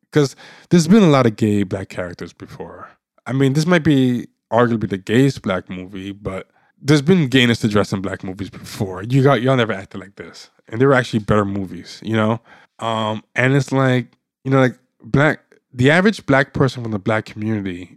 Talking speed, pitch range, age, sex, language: 210 wpm, 105-130 Hz, 20-39, male, English